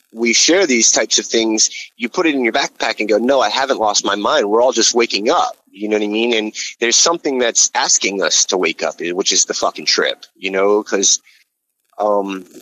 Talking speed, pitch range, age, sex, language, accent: 230 wpm, 105-140 Hz, 30-49, male, English, American